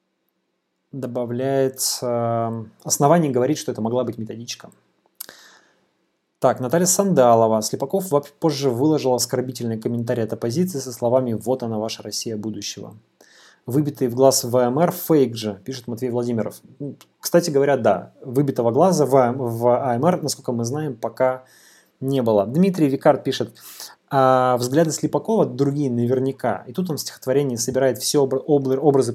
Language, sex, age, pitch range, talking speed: Russian, male, 20-39, 120-150 Hz, 135 wpm